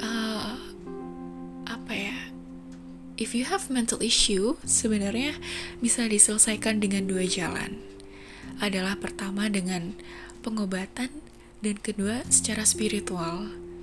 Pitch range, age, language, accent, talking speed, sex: 170-230 Hz, 10-29, Indonesian, native, 95 wpm, female